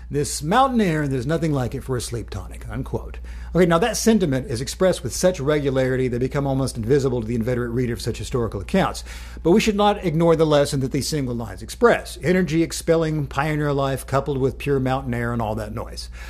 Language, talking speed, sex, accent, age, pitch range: English, 215 wpm, male, American, 50-69, 120-160 Hz